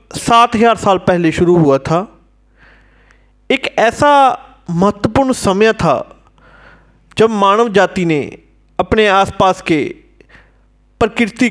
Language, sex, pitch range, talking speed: Hindi, male, 170-230 Hz, 100 wpm